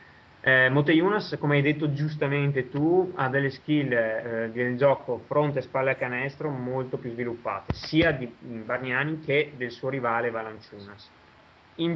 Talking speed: 150 wpm